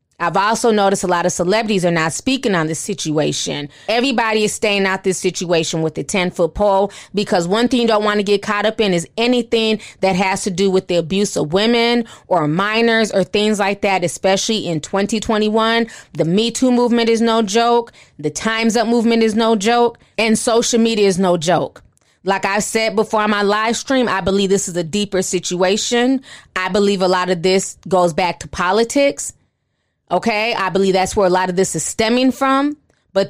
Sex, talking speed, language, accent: female, 205 wpm, English, American